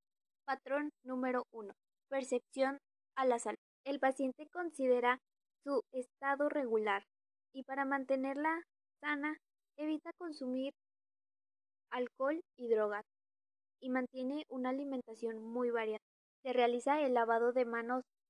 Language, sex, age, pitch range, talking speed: Spanish, female, 20-39, 225-285 Hz, 110 wpm